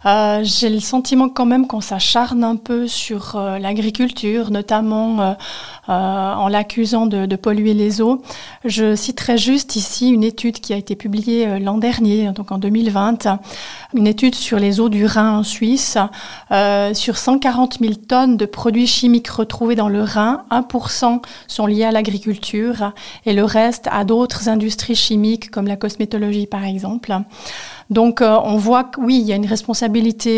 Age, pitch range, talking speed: 30-49, 210-240 Hz, 170 wpm